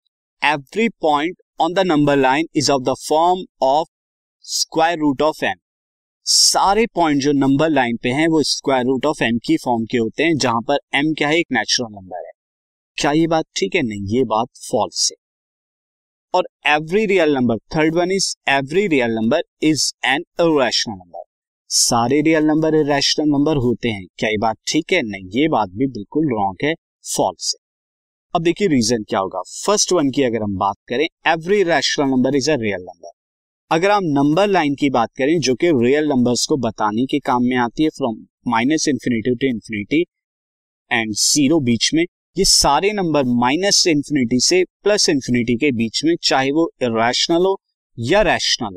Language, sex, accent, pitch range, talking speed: Hindi, male, native, 115-165 Hz, 170 wpm